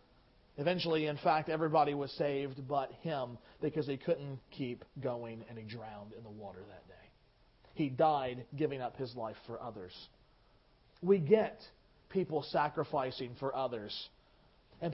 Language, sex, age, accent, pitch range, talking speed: English, male, 40-59, American, 155-245 Hz, 145 wpm